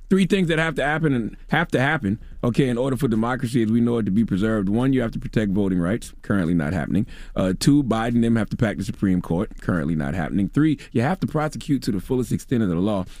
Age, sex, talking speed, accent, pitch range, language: 30-49, male, 265 wpm, American, 90-125 Hz, English